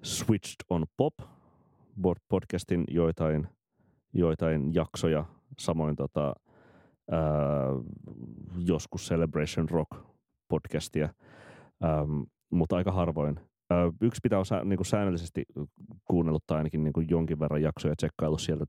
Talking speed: 80 wpm